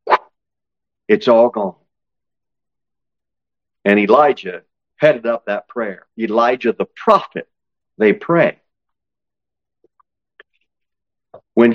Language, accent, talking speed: English, American, 75 wpm